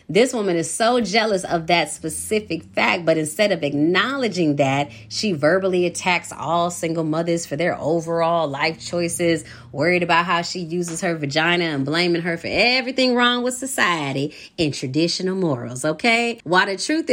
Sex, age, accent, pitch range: female, 30-49, American, 165-220 Hz